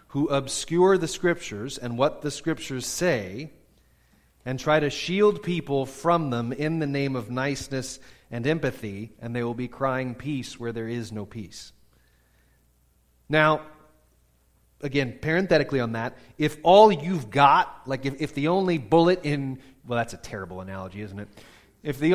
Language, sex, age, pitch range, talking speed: English, male, 30-49, 115-150 Hz, 160 wpm